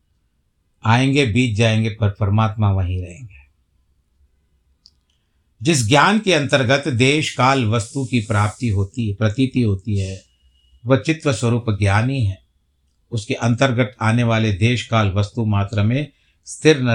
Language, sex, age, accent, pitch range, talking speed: Hindi, male, 60-79, native, 100-130 Hz, 130 wpm